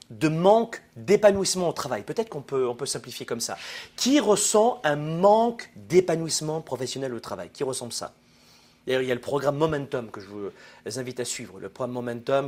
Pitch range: 125-175 Hz